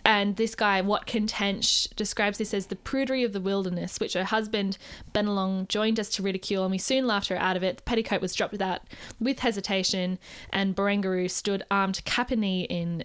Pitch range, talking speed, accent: 185-220 Hz, 200 wpm, Australian